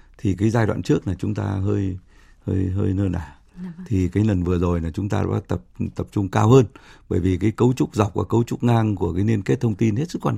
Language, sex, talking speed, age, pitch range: Vietnamese, male, 270 wpm, 60-79, 95-115 Hz